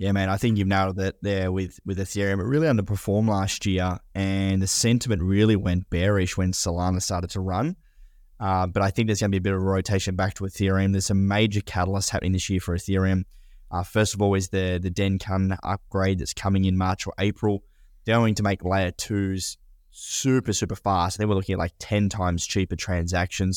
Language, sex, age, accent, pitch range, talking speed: English, male, 10-29, Australian, 90-100 Hz, 215 wpm